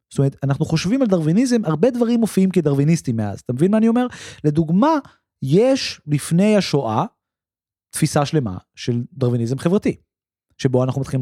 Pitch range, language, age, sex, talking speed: 130-190 Hz, Hebrew, 30-49, male, 150 wpm